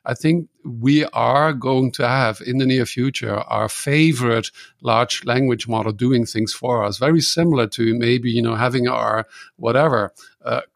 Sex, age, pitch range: male, 50-69, 115-135 Hz